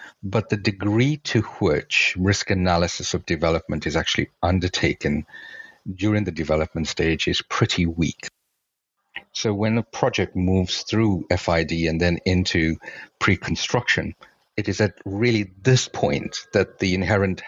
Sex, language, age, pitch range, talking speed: male, English, 50-69, 85-105 Hz, 135 wpm